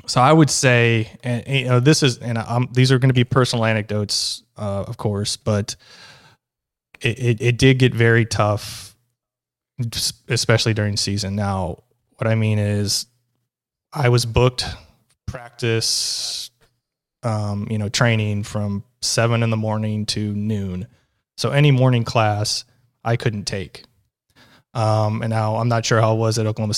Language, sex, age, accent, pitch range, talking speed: English, male, 20-39, American, 105-125 Hz, 155 wpm